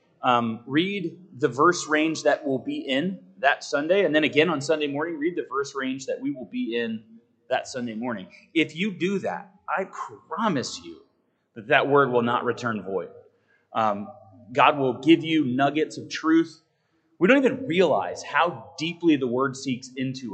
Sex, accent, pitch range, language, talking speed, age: male, American, 125-160 Hz, English, 180 wpm, 30-49